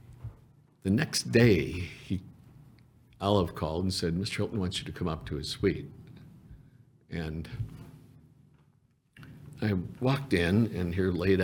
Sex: male